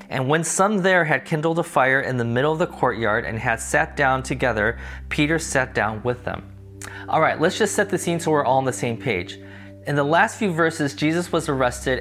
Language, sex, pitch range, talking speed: English, male, 120-165 Hz, 230 wpm